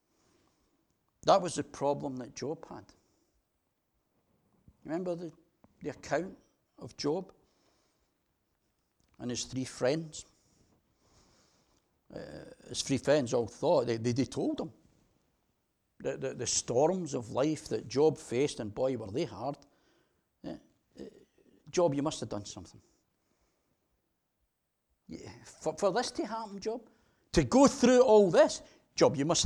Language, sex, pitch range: English, male, 115-155 Hz